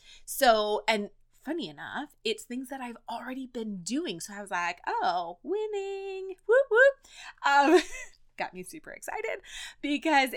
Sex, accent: female, American